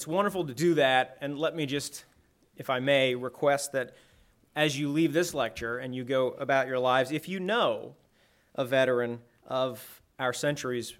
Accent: American